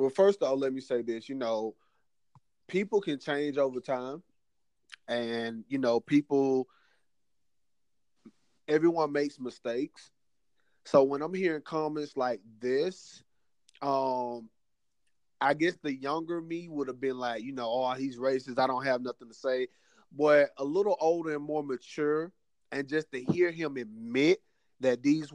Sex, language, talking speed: male, English, 155 wpm